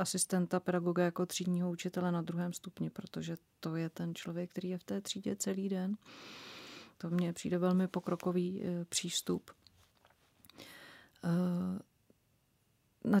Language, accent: Czech, native